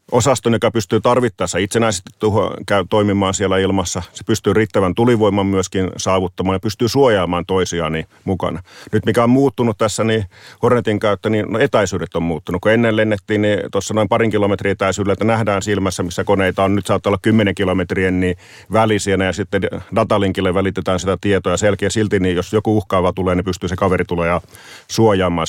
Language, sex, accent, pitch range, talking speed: Finnish, male, native, 90-110 Hz, 175 wpm